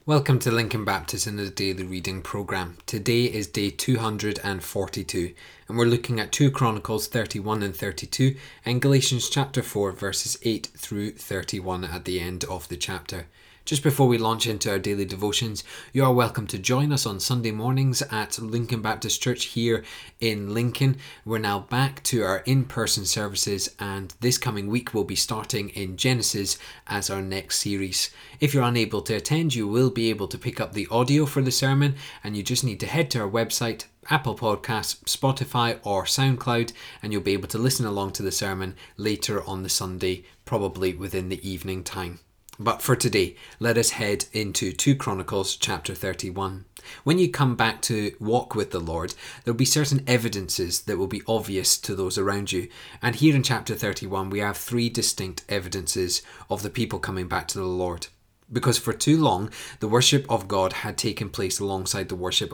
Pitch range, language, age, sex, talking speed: 95-125 Hz, English, 20-39, male, 190 wpm